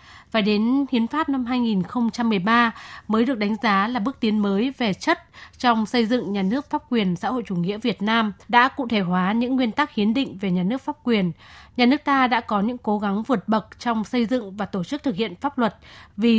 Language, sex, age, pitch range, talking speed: Vietnamese, female, 20-39, 205-245 Hz, 235 wpm